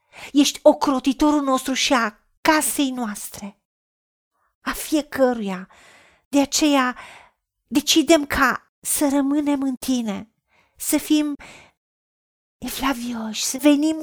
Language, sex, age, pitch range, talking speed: Romanian, female, 40-59, 210-290 Hz, 95 wpm